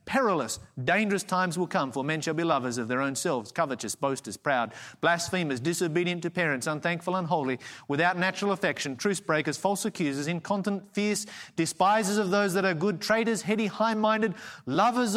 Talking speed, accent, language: 165 wpm, Australian, English